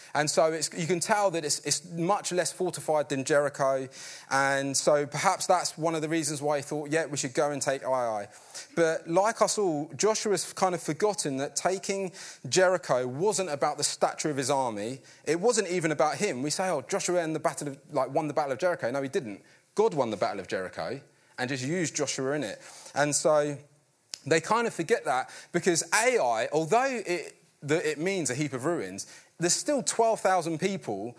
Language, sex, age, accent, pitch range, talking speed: English, male, 30-49, British, 145-190 Hz, 190 wpm